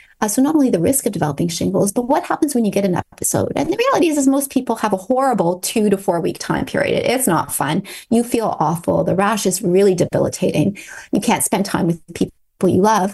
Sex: female